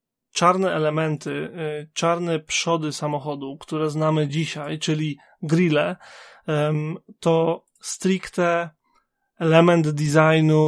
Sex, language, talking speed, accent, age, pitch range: male, Polish, 80 wpm, native, 20-39, 150-165 Hz